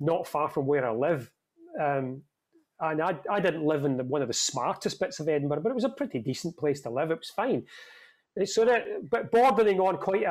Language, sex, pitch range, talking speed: English, male, 140-185 Hz, 235 wpm